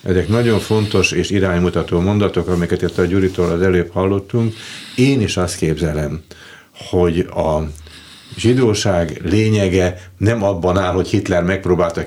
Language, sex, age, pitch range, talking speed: Hungarian, male, 60-79, 90-110 Hz, 135 wpm